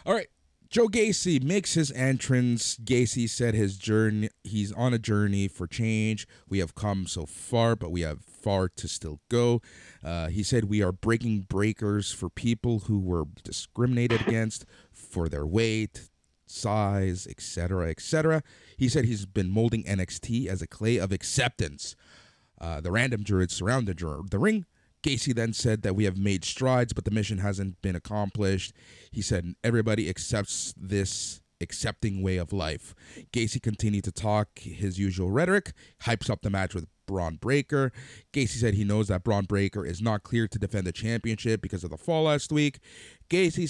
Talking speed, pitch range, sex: 170 wpm, 95-120 Hz, male